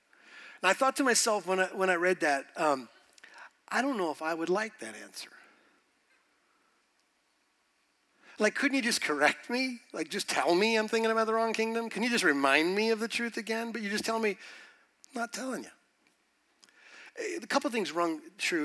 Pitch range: 155-240 Hz